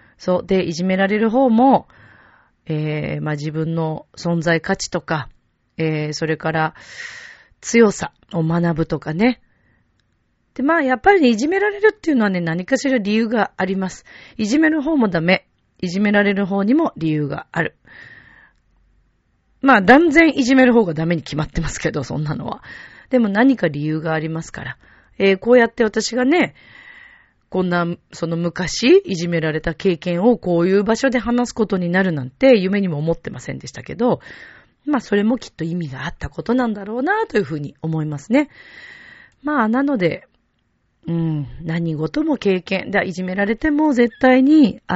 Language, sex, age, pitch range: Japanese, female, 40-59, 170-260 Hz